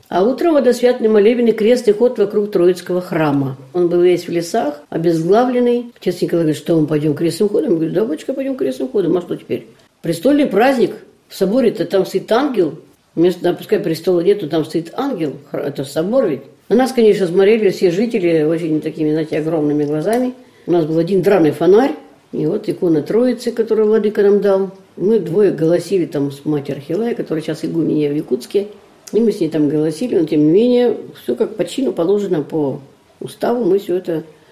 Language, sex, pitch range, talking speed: Russian, female, 155-210 Hz, 190 wpm